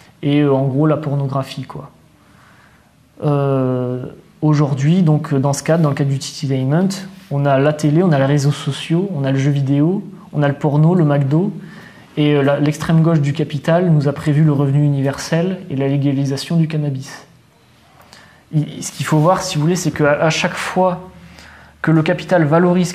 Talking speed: 180 wpm